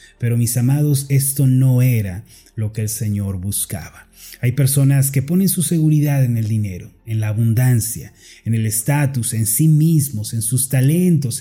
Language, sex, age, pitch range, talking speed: Spanish, male, 30-49, 120-155 Hz, 170 wpm